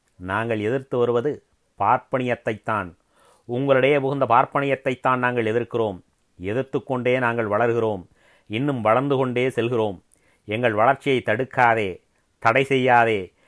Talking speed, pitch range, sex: 100 wpm, 115-135 Hz, male